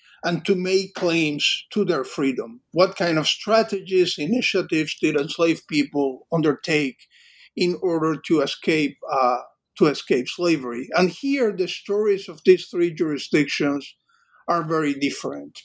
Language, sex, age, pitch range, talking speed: English, male, 50-69, 145-185 Hz, 135 wpm